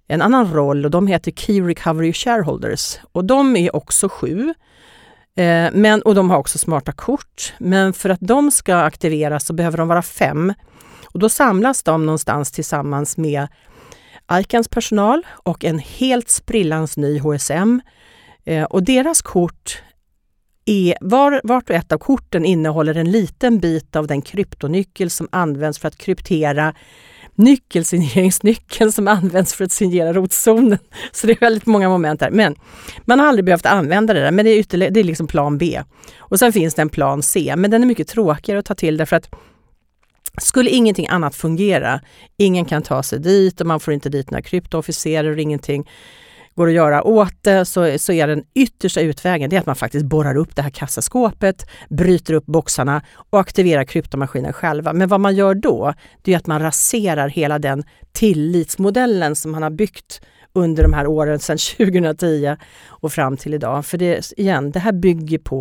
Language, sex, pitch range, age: Swedish, female, 150-200 Hz, 50-69